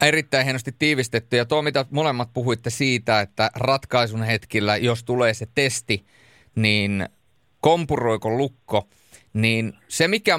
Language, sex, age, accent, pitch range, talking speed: Finnish, male, 30-49, native, 115-150 Hz, 125 wpm